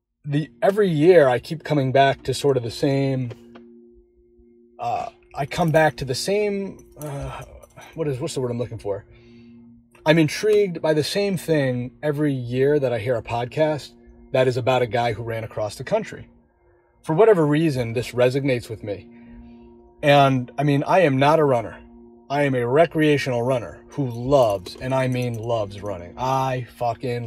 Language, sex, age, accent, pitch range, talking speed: English, male, 30-49, American, 115-140 Hz, 175 wpm